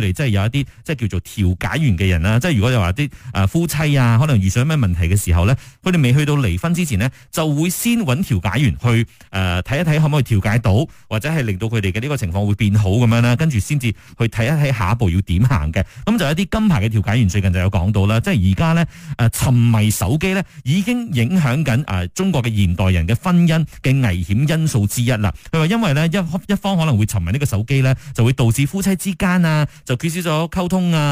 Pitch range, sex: 105-160 Hz, male